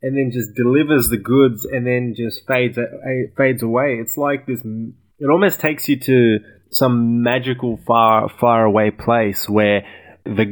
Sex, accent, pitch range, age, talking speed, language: male, Australian, 110-130 Hz, 20-39, 165 wpm, English